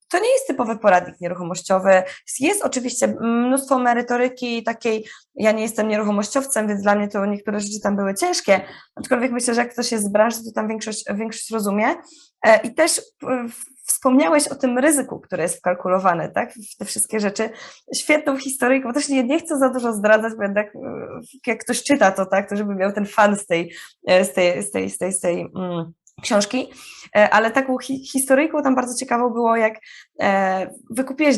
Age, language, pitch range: 20-39, Polish, 205-265 Hz